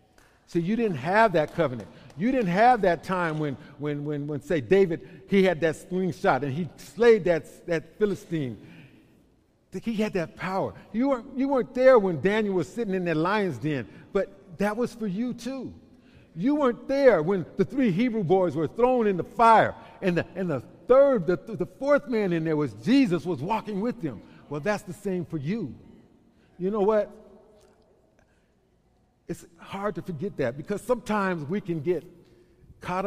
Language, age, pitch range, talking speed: English, 50-69, 160-215 Hz, 180 wpm